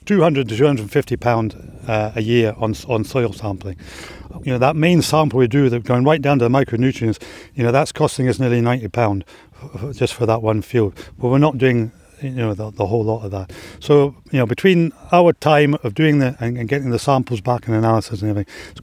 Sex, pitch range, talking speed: male, 115-145 Hz, 230 wpm